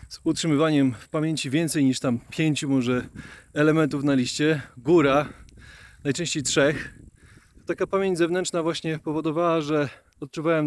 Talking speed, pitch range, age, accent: 125 wpm, 135-175 Hz, 30-49, native